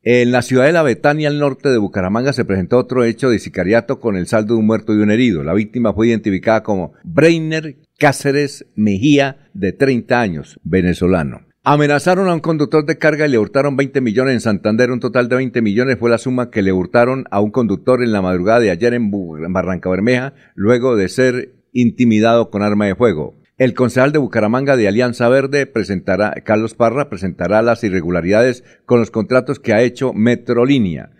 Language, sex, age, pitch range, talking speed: Spanish, male, 50-69, 110-135 Hz, 190 wpm